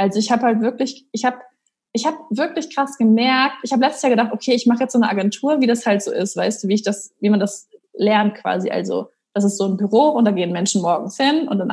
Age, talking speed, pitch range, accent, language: 20-39, 255 wpm, 205-245 Hz, German, German